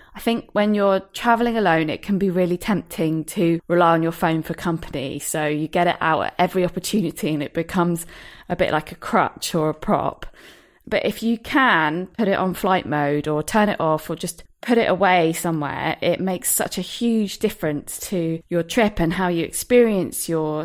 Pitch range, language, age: 165-205 Hz, English, 20-39